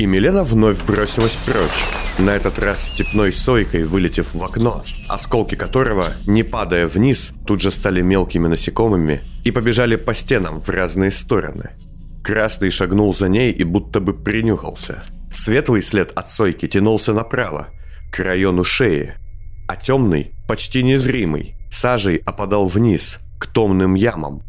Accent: native